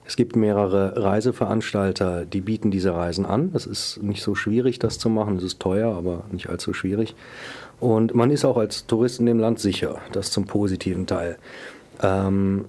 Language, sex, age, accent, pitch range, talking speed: German, male, 40-59, German, 95-115 Hz, 185 wpm